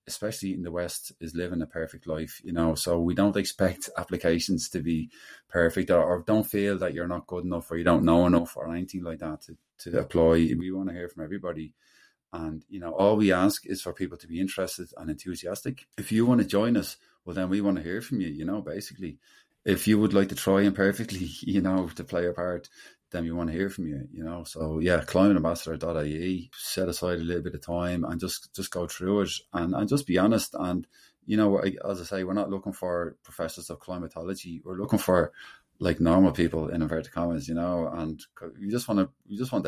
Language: English